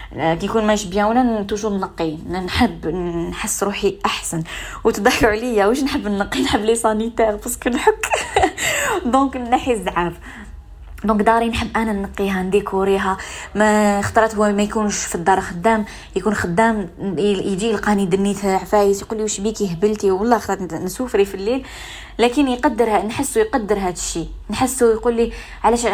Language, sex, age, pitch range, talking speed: Arabic, female, 20-39, 185-225 Hz, 135 wpm